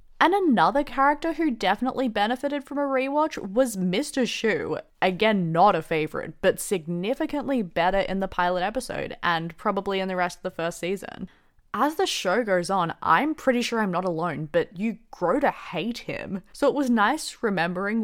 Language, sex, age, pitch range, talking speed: English, female, 20-39, 175-245 Hz, 180 wpm